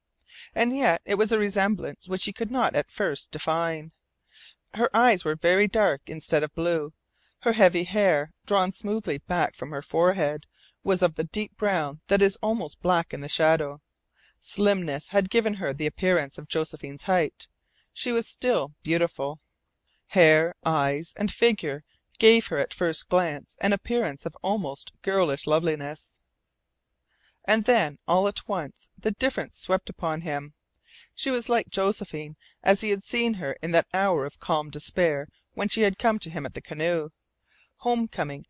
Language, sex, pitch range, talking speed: English, female, 150-210 Hz, 165 wpm